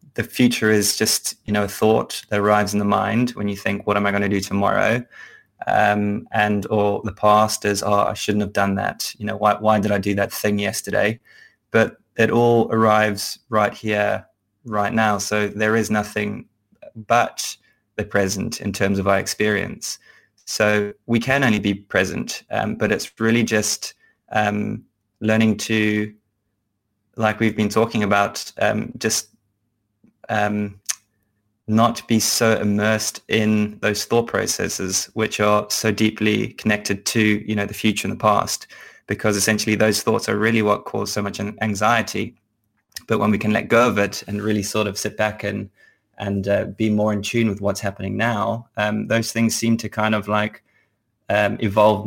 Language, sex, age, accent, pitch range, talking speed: English, male, 20-39, British, 100-110 Hz, 175 wpm